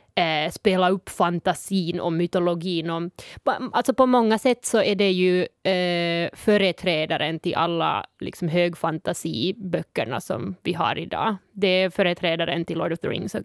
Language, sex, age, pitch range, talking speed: Swedish, female, 20-39, 170-195 Hz, 145 wpm